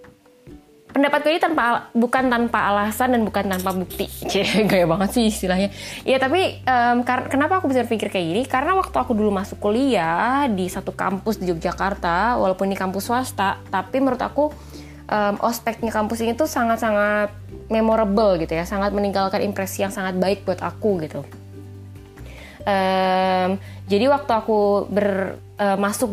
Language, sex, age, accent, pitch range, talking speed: Indonesian, female, 20-39, native, 185-240 Hz, 155 wpm